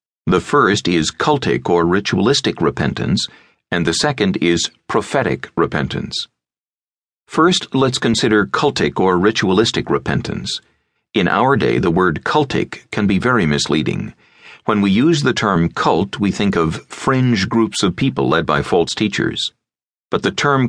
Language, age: English, 50-69